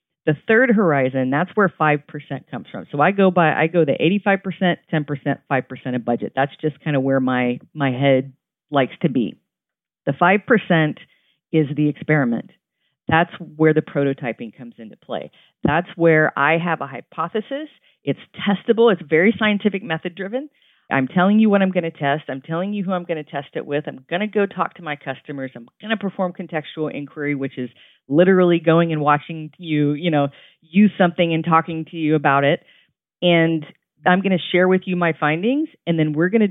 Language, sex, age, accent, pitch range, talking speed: English, female, 40-59, American, 145-180 Hz, 195 wpm